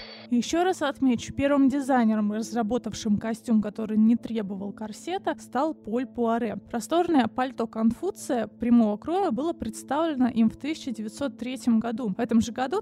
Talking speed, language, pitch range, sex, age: 135 wpm, Russian, 220-280 Hz, female, 20-39